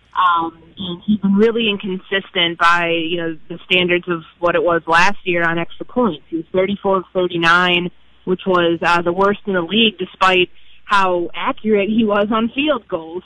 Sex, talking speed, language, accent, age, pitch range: female, 195 wpm, English, American, 30-49, 185-230 Hz